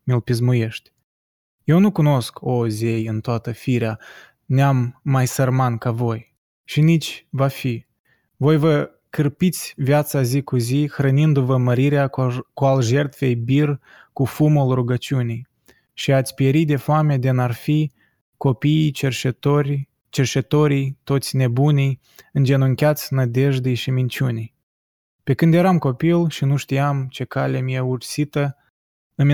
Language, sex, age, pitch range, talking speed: Romanian, male, 20-39, 125-145 Hz, 130 wpm